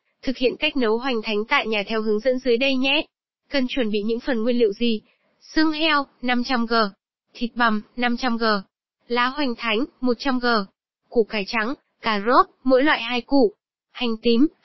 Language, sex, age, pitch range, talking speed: Vietnamese, female, 20-39, 220-270 Hz, 175 wpm